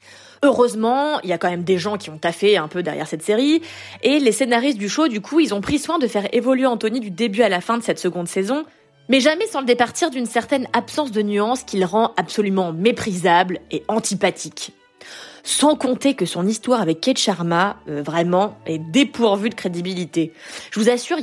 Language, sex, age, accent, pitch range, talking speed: French, female, 20-39, French, 190-260 Hz, 210 wpm